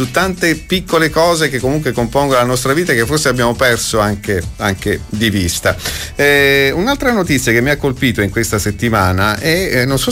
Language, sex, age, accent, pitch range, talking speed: Italian, male, 40-59, native, 100-125 Hz, 190 wpm